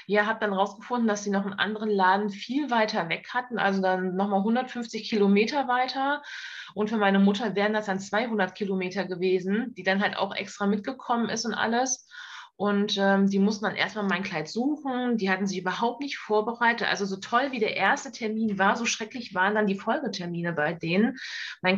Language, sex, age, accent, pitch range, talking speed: German, female, 20-39, German, 195-230 Hz, 200 wpm